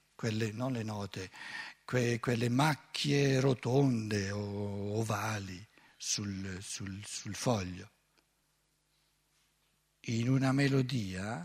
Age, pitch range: 60-79, 115-155 Hz